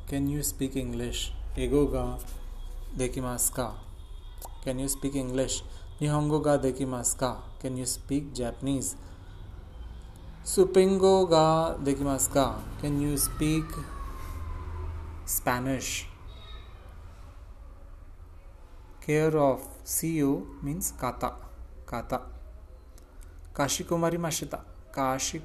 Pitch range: 90-145 Hz